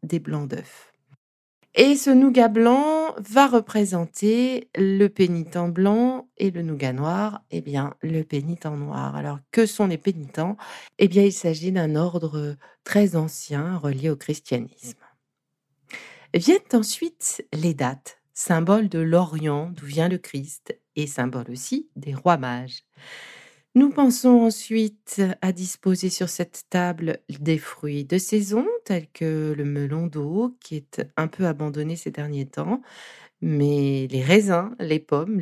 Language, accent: French, French